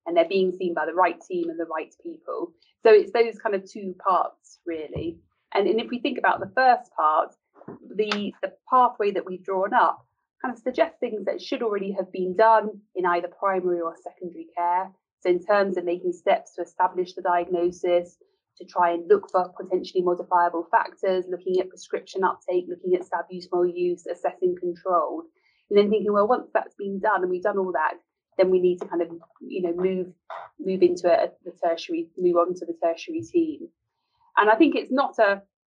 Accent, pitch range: British, 180-235 Hz